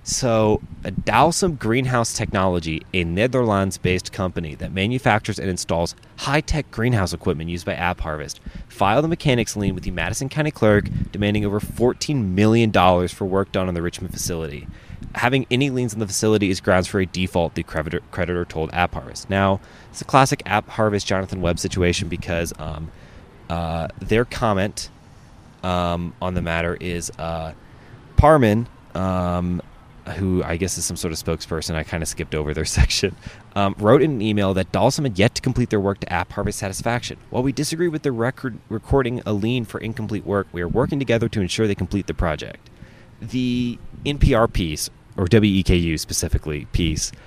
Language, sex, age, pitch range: English, male, 30-49, 85-115 Hz